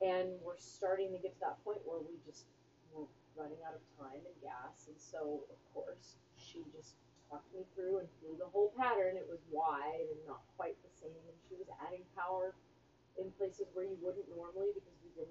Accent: American